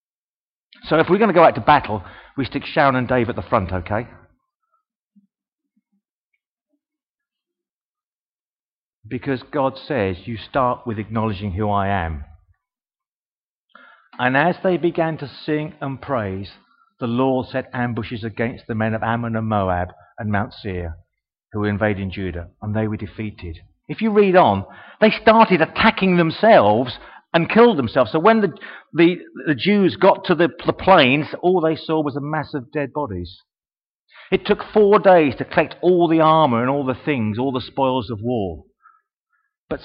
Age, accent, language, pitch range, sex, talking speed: 40-59, British, English, 110-180 Hz, male, 165 wpm